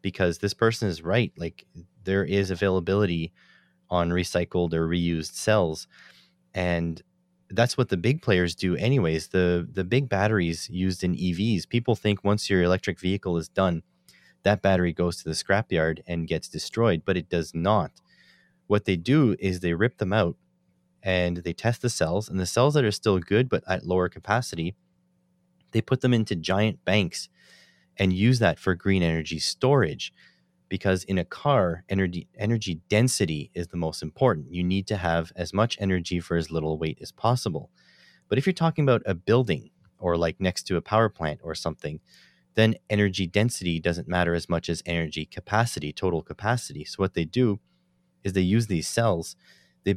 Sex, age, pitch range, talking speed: male, 30-49, 85-105 Hz, 180 wpm